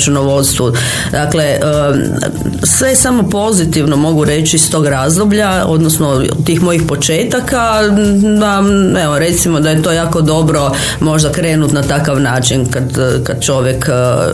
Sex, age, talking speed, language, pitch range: female, 30-49, 125 wpm, Croatian, 135-170 Hz